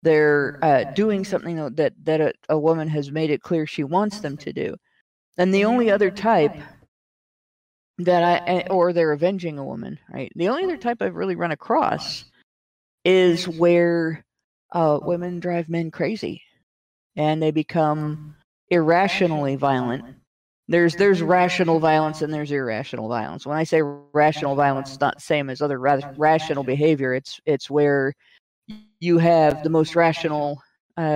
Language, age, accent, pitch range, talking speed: English, 50-69, American, 140-170 Hz, 160 wpm